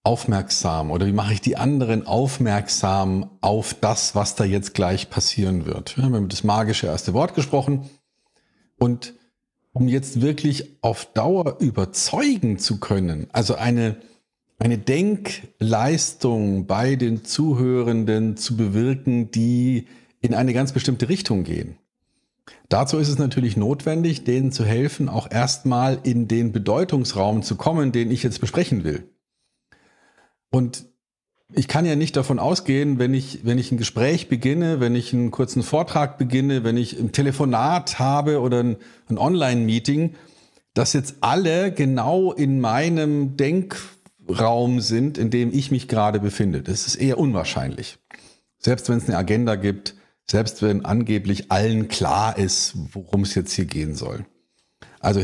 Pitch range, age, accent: 110-140 Hz, 50-69, German